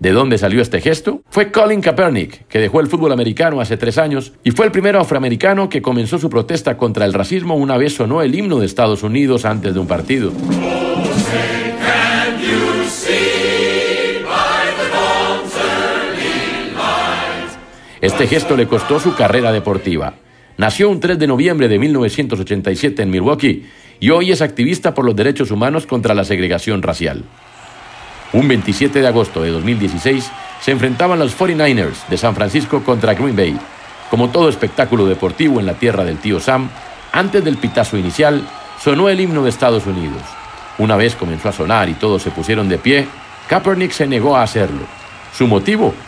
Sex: male